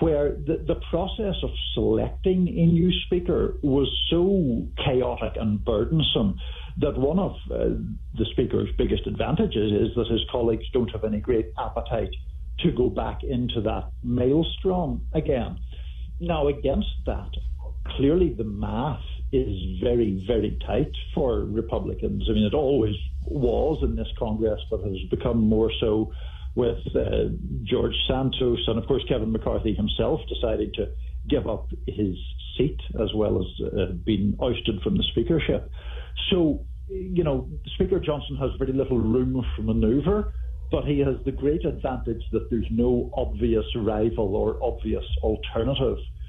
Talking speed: 145 wpm